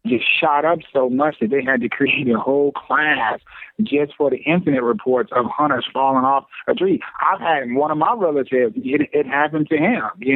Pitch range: 130-170 Hz